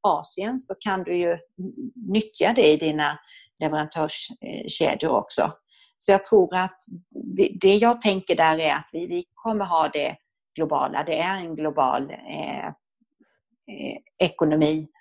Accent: native